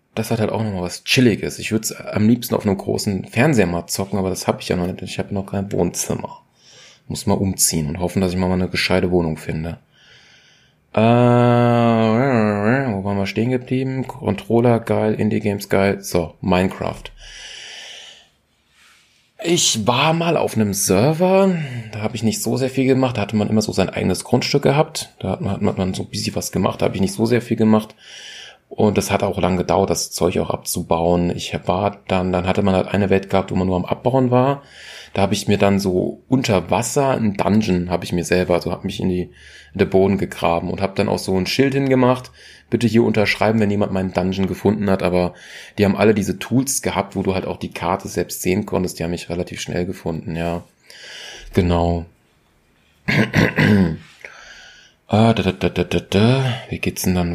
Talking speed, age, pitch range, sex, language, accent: 205 wpm, 30-49, 90-115 Hz, male, German, German